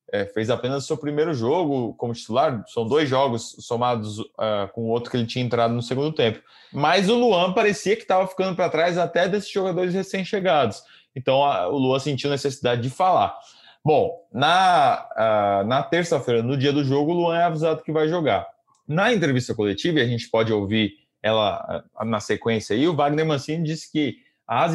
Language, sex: Portuguese, male